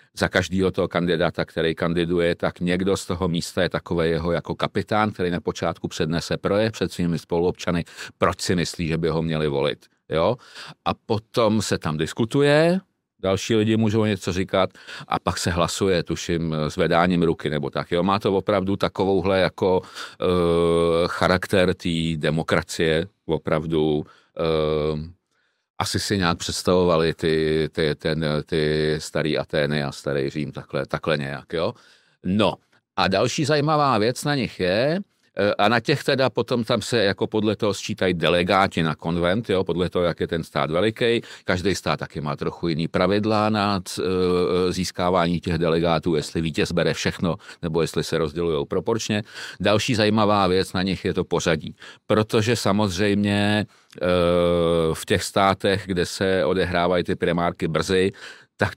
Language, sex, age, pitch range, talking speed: Czech, male, 50-69, 80-100 Hz, 155 wpm